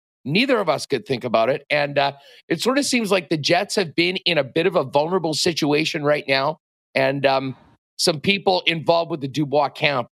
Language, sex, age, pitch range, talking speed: English, male, 40-59, 145-180 Hz, 215 wpm